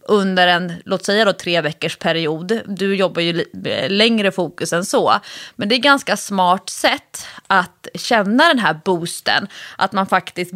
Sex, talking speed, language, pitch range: female, 170 wpm, English, 175-235 Hz